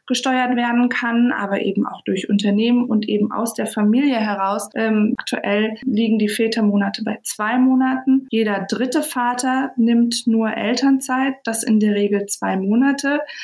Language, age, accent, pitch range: German, 20-39, German, 215-255 Hz